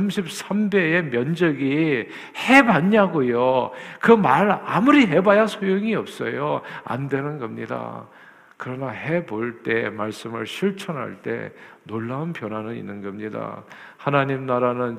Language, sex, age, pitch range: Korean, male, 50-69, 115-150 Hz